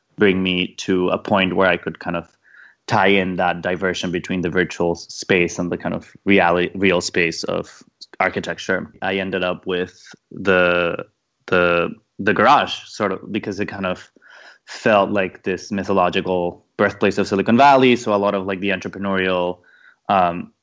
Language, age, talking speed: English, 20-39, 165 wpm